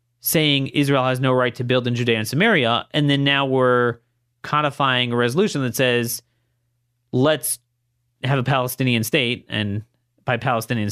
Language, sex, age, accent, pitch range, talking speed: English, male, 30-49, American, 115-145 Hz, 155 wpm